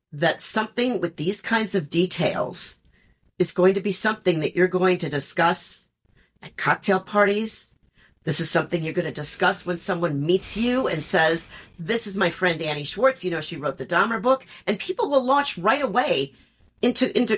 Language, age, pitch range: English, 50-69, 160-205 Hz